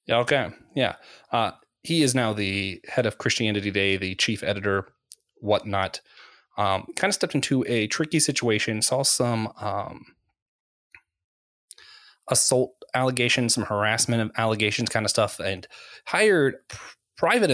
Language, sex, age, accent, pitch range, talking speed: English, male, 20-39, American, 105-130 Hz, 125 wpm